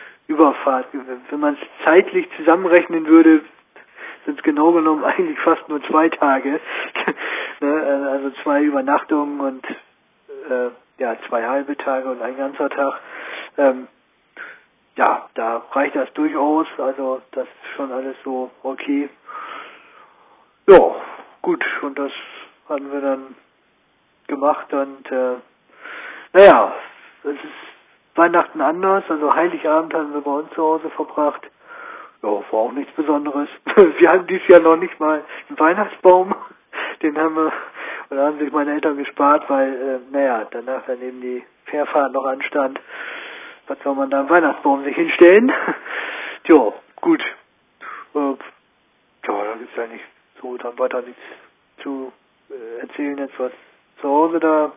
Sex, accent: male, German